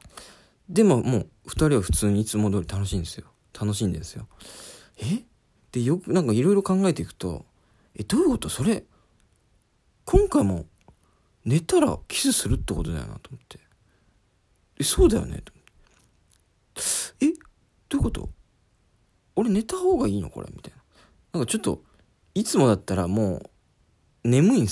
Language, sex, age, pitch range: Japanese, male, 40-59, 95-160 Hz